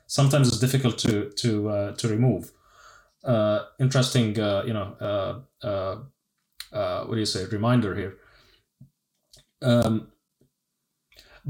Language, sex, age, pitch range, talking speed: English, male, 20-39, 115-135 Hz, 120 wpm